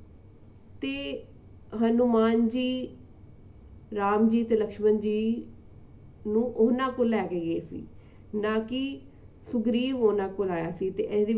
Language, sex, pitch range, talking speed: Punjabi, female, 200-235 Hz, 125 wpm